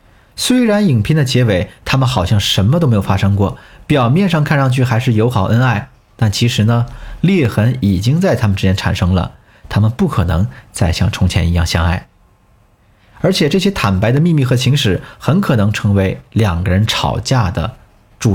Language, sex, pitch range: Chinese, male, 100-135 Hz